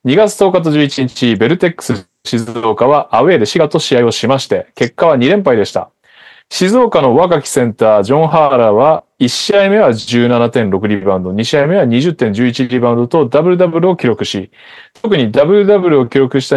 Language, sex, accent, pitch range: Japanese, male, native, 125-170 Hz